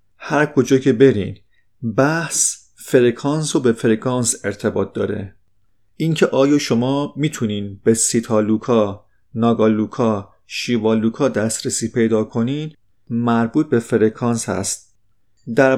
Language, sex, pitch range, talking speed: Persian, male, 105-135 Hz, 110 wpm